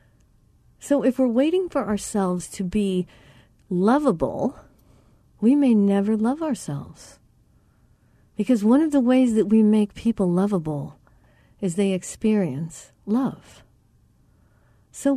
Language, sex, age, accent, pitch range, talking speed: English, female, 50-69, American, 190-255 Hz, 115 wpm